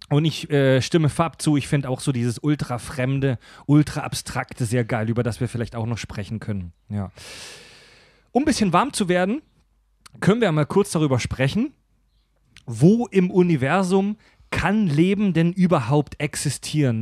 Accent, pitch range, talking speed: German, 125-175 Hz, 150 wpm